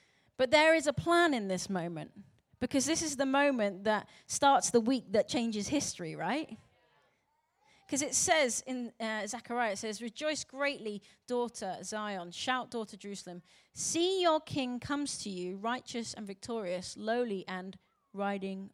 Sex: female